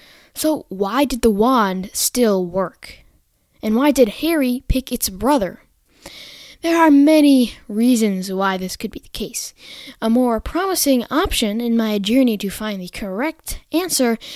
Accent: American